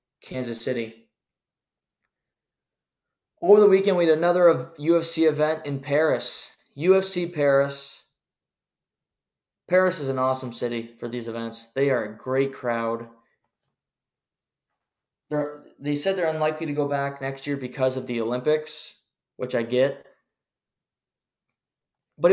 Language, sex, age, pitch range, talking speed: English, male, 20-39, 130-155 Hz, 120 wpm